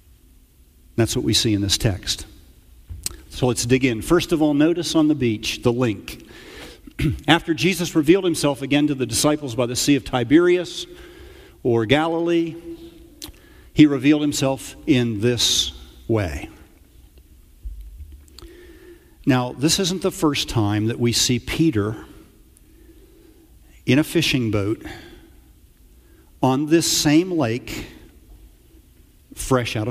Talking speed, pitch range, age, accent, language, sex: 120 wpm, 110-185 Hz, 50-69, American, English, male